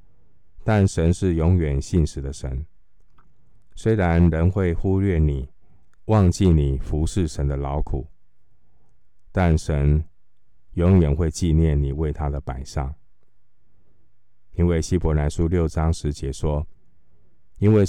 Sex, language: male, Chinese